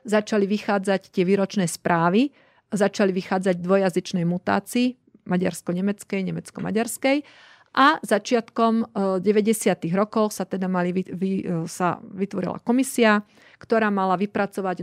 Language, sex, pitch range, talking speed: Slovak, female, 180-215 Hz, 105 wpm